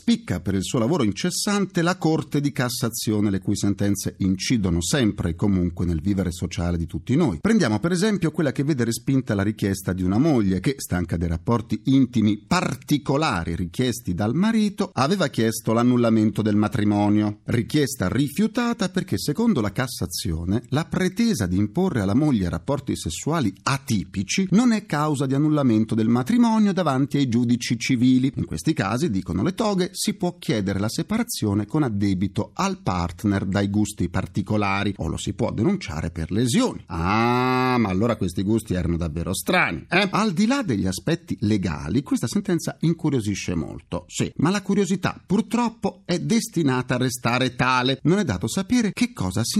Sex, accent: male, native